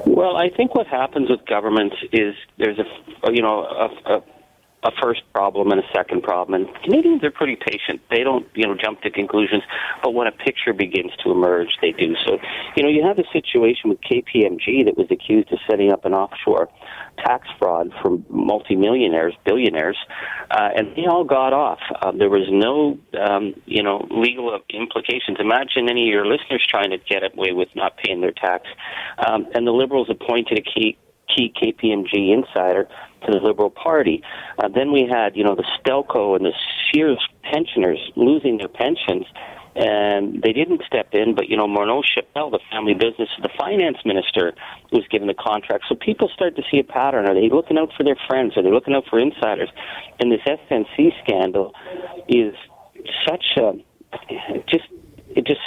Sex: male